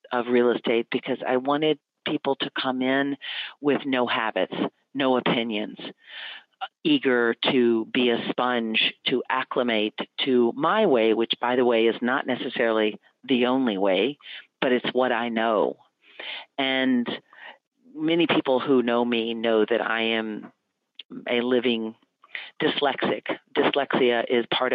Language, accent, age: English, American, 40-59